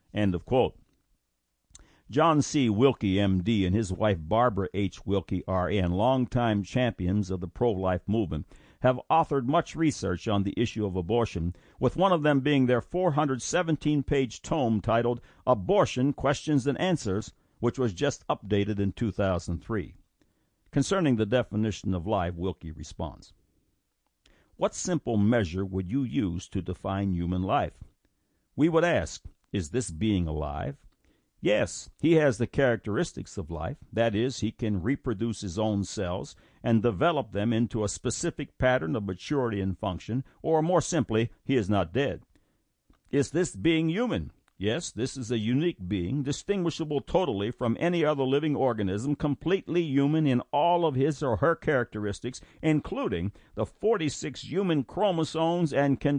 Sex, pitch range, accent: male, 100-140 Hz, American